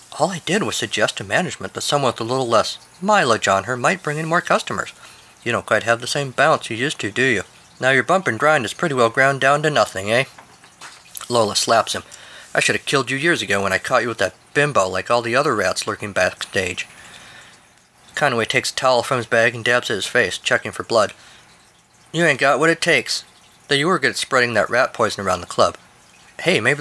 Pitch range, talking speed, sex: 100-135 Hz, 235 wpm, male